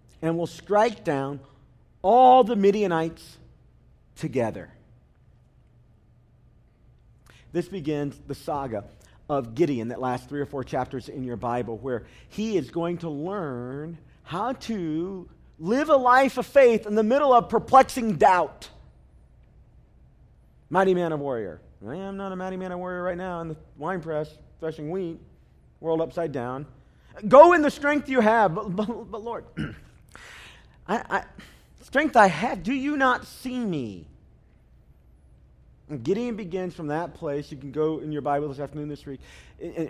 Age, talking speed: 40-59, 155 wpm